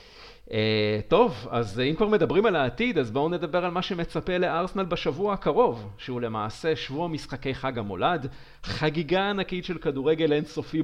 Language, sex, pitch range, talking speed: Hebrew, male, 125-175 Hz, 155 wpm